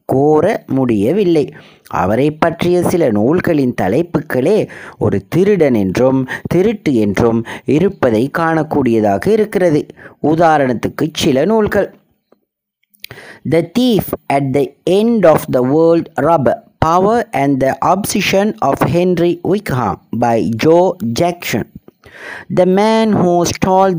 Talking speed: 105 wpm